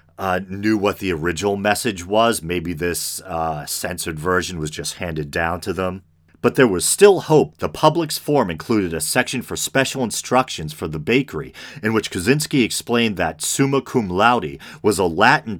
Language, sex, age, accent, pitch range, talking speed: English, male, 40-59, American, 80-130 Hz, 175 wpm